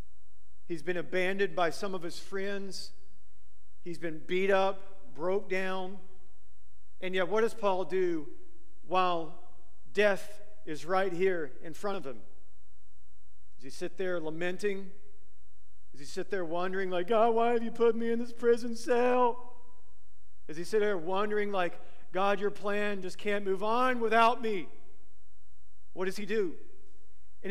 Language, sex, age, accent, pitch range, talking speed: English, male, 40-59, American, 170-230 Hz, 155 wpm